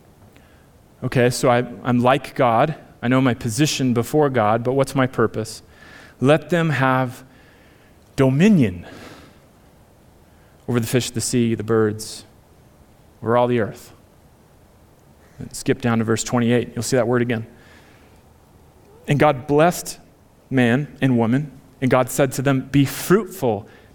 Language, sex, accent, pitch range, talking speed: English, male, American, 120-155 Hz, 140 wpm